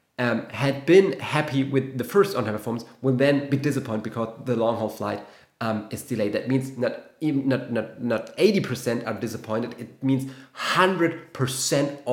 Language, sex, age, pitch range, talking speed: English, male, 30-49, 120-145 Hz, 150 wpm